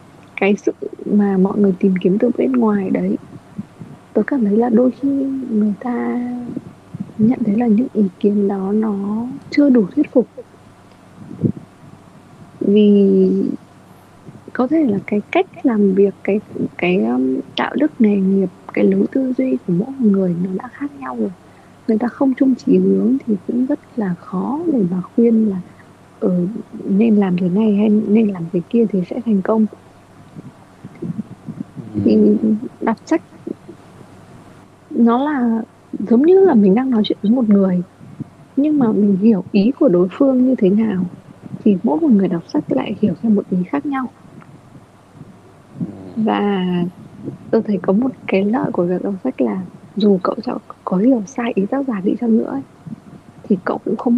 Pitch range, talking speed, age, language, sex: 195-245 Hz, 170 wpm, 20-39, Vietnamese, female